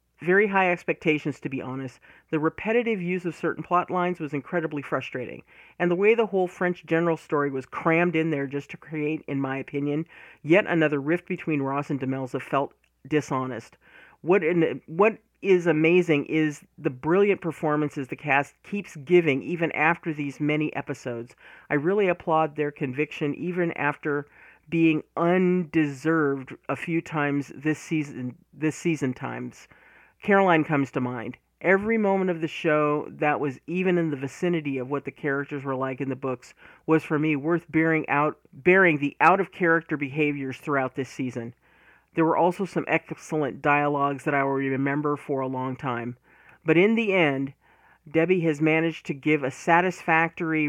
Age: 40-59